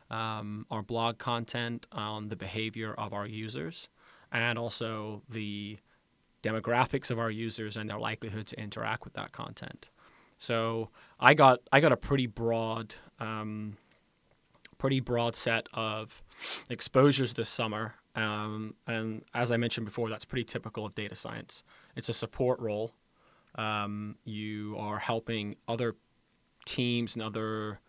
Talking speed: 140 wpm